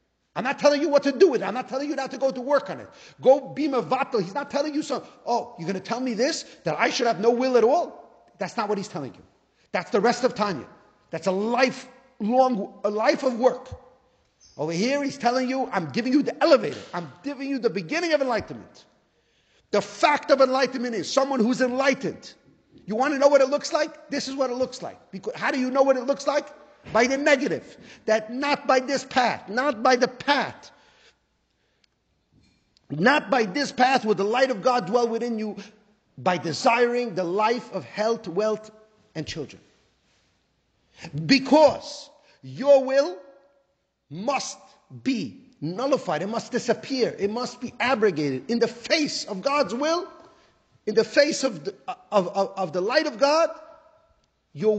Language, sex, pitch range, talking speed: English, male, 215-280 Hz, 190 wpm